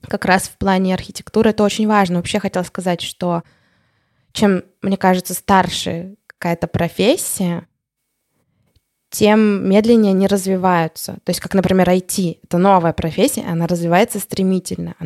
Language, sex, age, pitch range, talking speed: Russian, female, 20-39, 170-195 Hz, 135 wpm